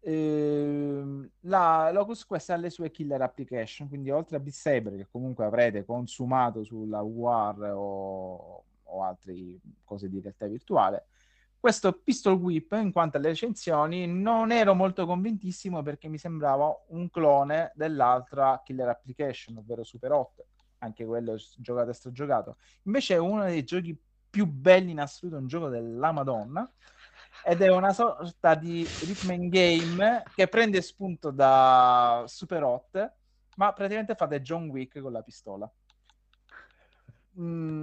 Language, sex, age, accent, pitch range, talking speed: Italian, male, 30-49, native, 125-180 Hz, 140 wpm